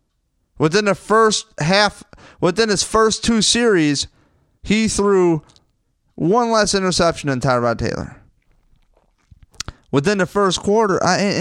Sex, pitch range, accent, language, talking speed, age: male, 125-195 Hz, American, English, 115 wpm, 30-49